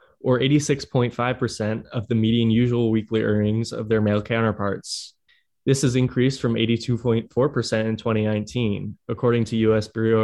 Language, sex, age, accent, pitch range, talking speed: English, male, 20-39, American, 105-125 Hz, 135 wpm